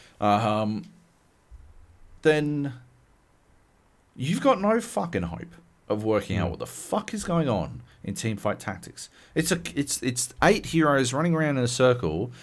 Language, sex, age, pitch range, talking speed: English, male, 40-59, 90-140 Hz, 155 wpm